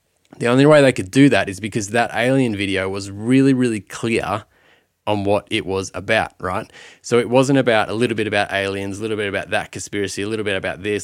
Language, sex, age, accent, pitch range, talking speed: English, male, 20-39, Australian, 100-125 Hz, 230 wpm